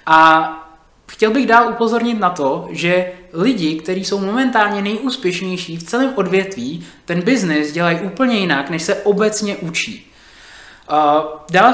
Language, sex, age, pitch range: Czech, male, 20-39, 165-225 Hz